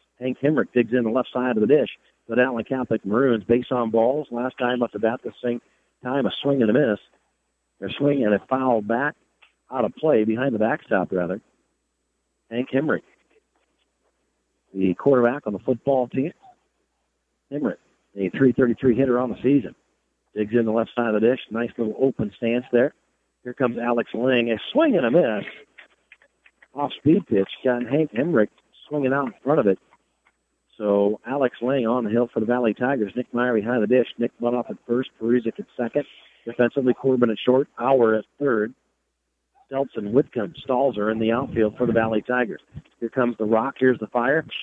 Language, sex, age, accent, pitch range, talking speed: English, male, 50-69, American, 115-145 Hz, 185 wpm